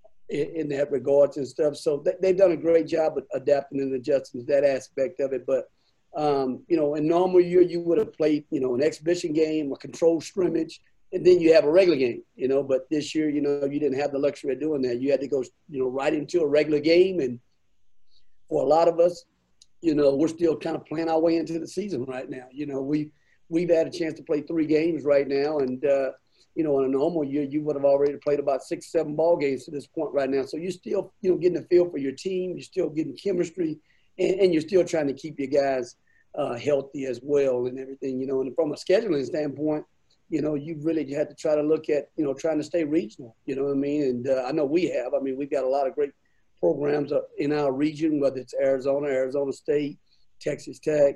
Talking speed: 250 wpm